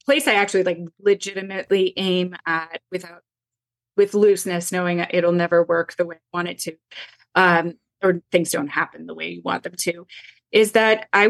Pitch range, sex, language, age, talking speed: 170-190 Hz, female, English, 20-39, 180 wpm